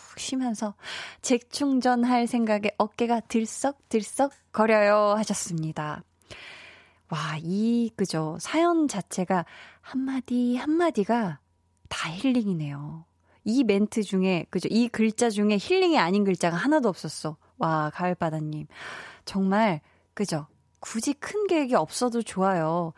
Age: 20-39